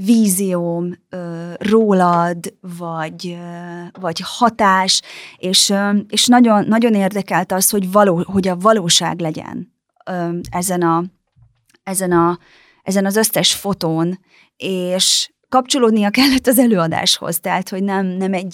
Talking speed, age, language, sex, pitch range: 125 wpm, 30-49, Hungarian, female, 175-215 Hz